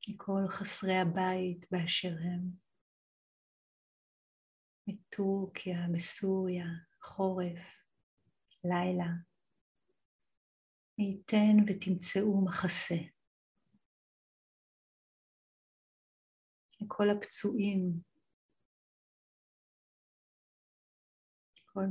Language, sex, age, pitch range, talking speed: Hebrew, female, 50-69, 180-200 Hz, 45 wpm